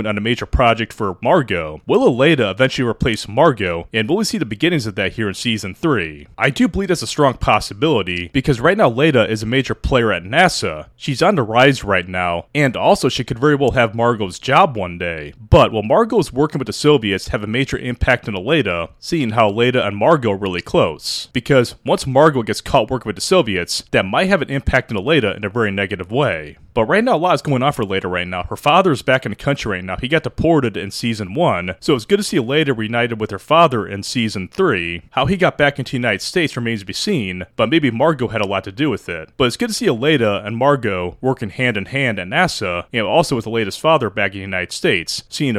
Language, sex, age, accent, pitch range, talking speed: English, male, 20-39, American, 100-145 Hz, 240 wpm